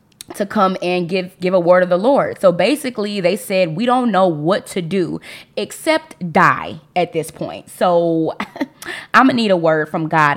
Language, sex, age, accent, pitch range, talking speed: English, female, 20-39, American, 160-200 Hz, 195 wpm